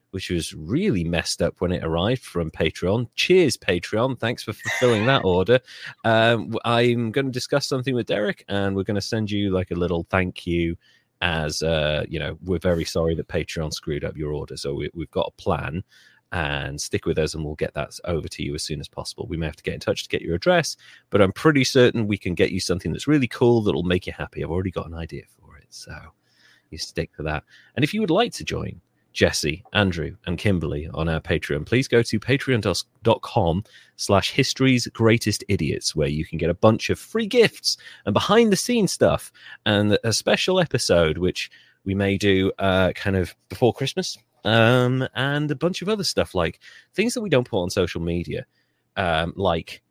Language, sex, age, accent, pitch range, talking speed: English, male, 30-49, British, 85-130 Hz, 210 wpm